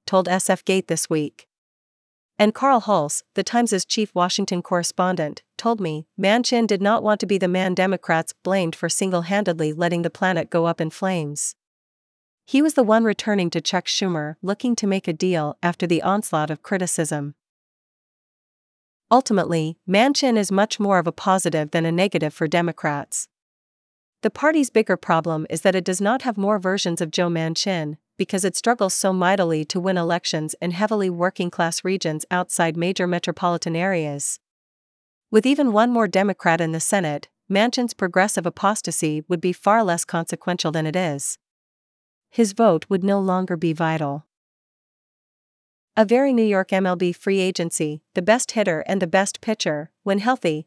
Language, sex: English, female